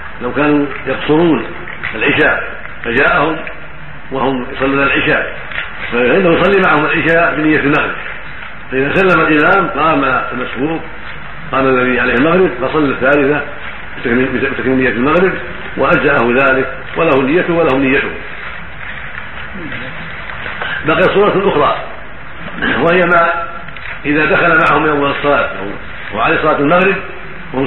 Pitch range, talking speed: 135-160 Hz, 105 wpm